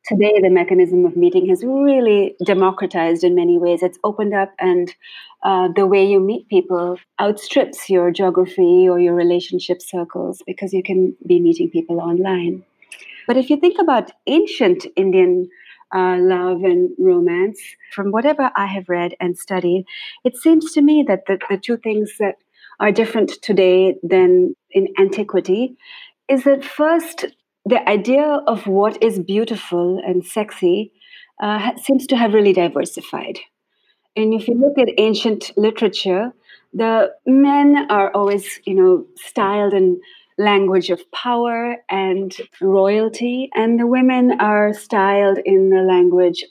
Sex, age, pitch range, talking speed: female, 30-49, 185-275 Hz, 145 wpm